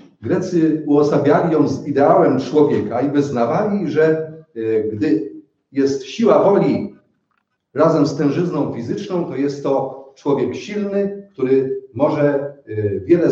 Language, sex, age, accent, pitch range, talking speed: Polish, male, 40-59, native, 120-175 Hz, 115 wpm